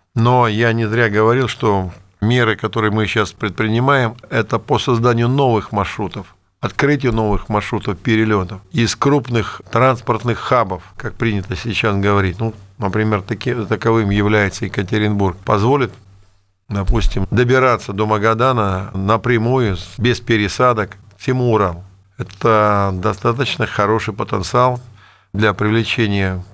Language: Russian